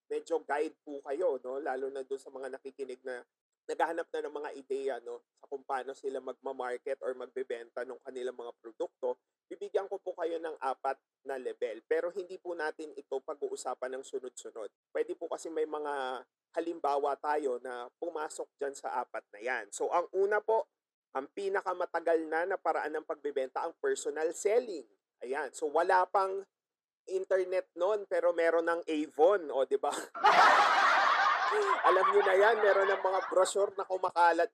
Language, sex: Filipino, male